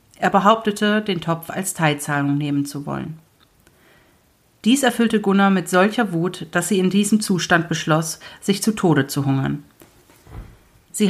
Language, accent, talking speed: German, German, 145 wpm